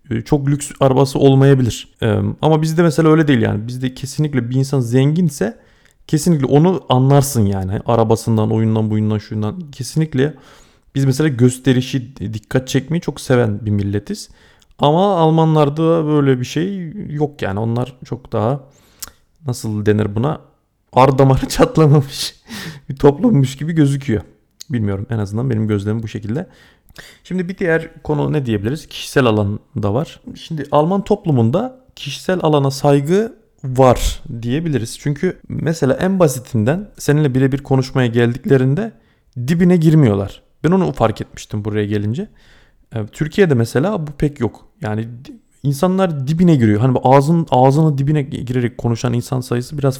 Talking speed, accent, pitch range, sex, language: 130 wpm, native, 115-155 Hz, male, Turkish